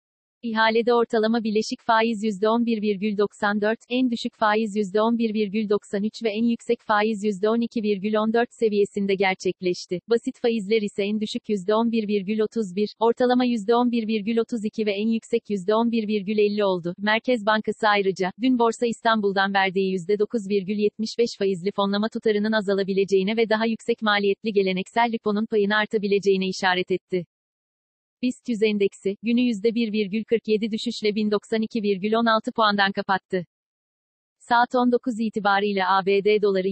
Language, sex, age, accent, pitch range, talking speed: Turkish, female, 40-59, native, 200-230 Hz, 105 wpm